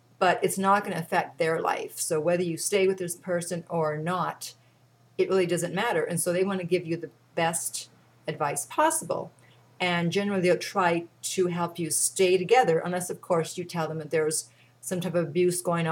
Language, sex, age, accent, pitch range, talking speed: English, female, 40-59, American, 150-185 Hz, 205 wpm